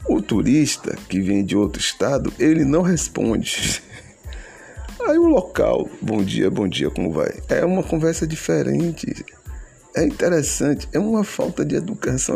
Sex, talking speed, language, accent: male, 145 wpm, Portuguese, Brazilian